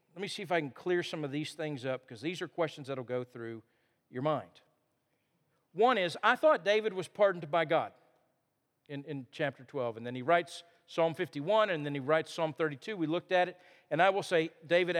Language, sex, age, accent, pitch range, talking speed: English, male, 50-69, American, 145-200 Hz, 225 wpm